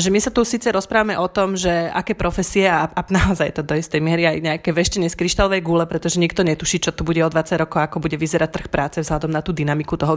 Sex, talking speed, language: female, 255 wpm, Slovak